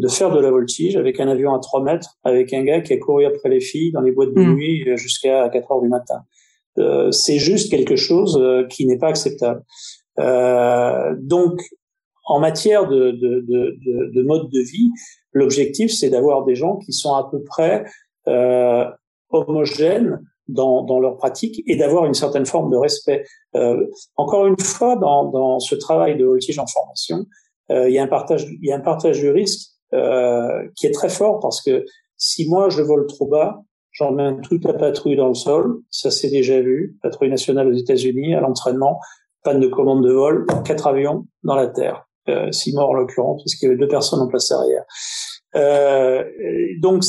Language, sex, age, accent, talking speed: French, male, 40-59, French, 200 wpm